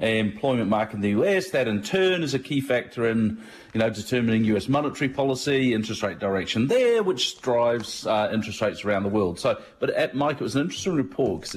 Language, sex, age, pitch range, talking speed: English, male, 40-59, 100-125 Hz, 215 wpm